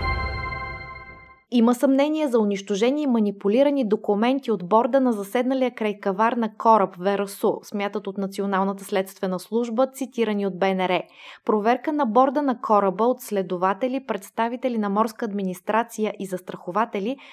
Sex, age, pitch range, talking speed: female, 20-39, 200-245 Hz, 125 wpm